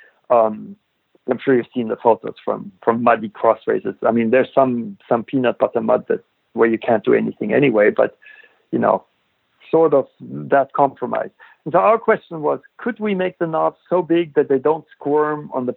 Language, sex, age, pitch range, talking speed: English, male, 60-79, 120-155 Hz, 200 wpm